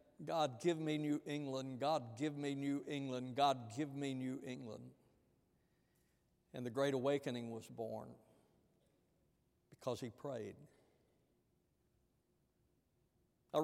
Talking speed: 110 wpm